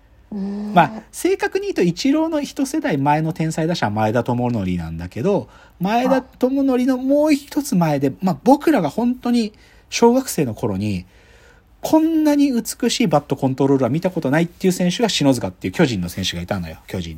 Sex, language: male, Japanese